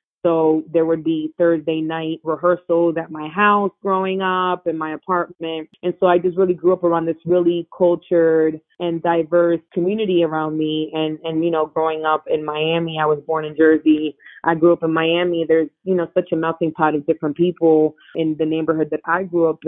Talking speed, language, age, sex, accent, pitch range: 200 wpm, English, 20-39, female, American, 160-185 Hz